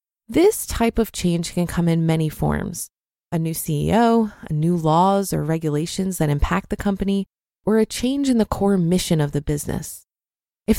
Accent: American